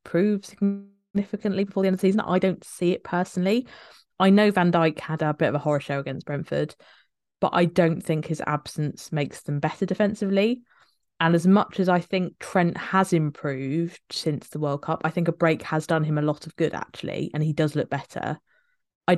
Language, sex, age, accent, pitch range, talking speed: English, female, 20-39, British, 150-180 Hz, 210 wpm